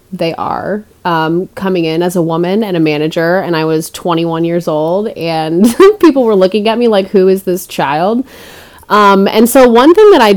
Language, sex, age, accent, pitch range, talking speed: English, female, 30-49, American, 175-200 Hz, 205 wpm